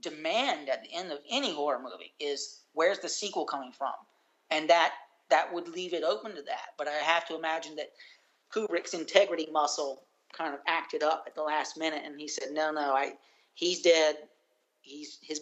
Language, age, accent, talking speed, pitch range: English, 40-59, American, 195 wpm, 150-180 Hz